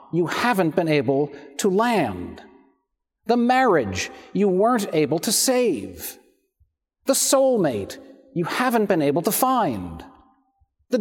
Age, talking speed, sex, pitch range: 50-69, 120 wpm, male, 175-275 Hz